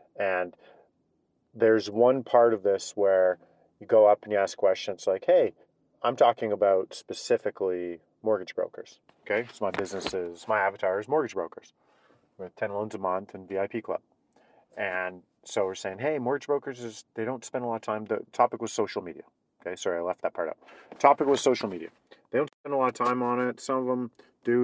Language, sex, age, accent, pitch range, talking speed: English, male, 40-59, American, 105-125 Hz, 205 wpm